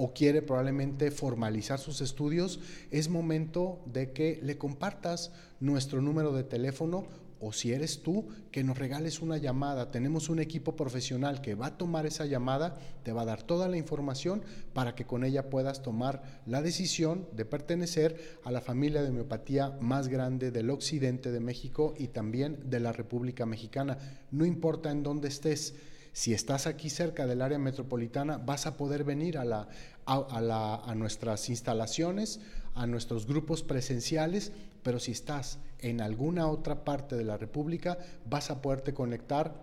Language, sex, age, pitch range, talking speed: Spanish, male, 40-59, 125-155 Hz, 160 wpm